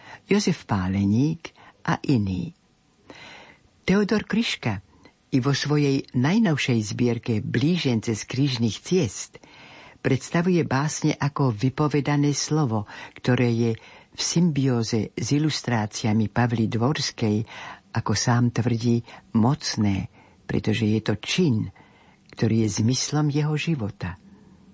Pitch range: 115-145 Hz